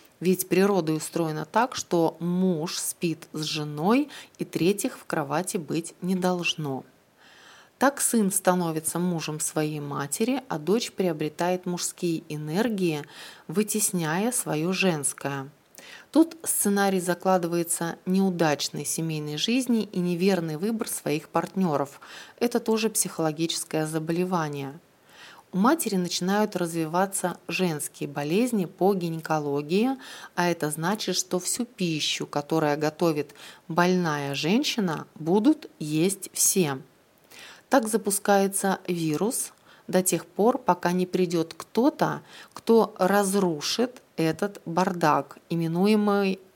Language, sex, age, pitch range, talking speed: Russian, female, 30-49, 160-200 Hz, 105 wpm